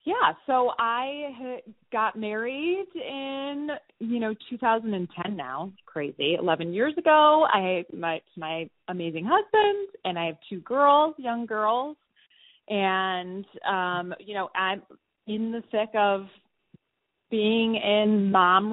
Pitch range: 180-240 Hz